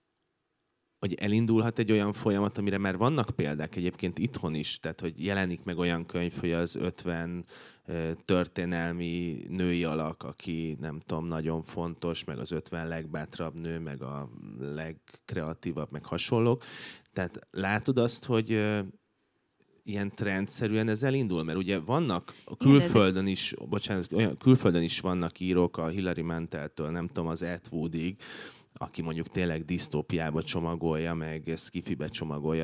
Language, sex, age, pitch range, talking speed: Hungarian, male, 30-49, 85-100 Hz, 140 wpm